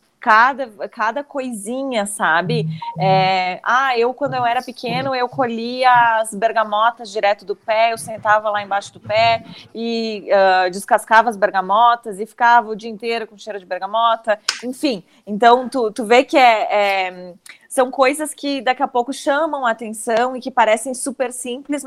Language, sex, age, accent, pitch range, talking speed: Portuguese, female, 20-39, Brazilian, 210-255 Hz, 155 wpm